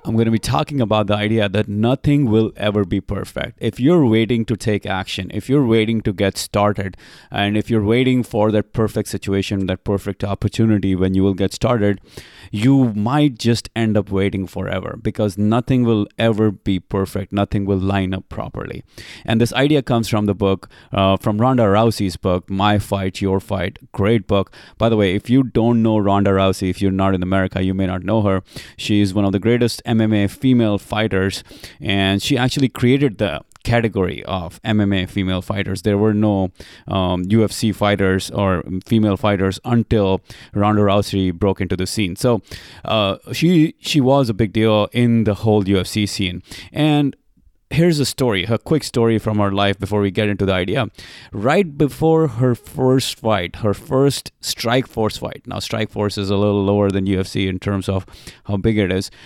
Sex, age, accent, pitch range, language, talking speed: male, 30-49, Indian, 95-115 Hz, English, 190 wpm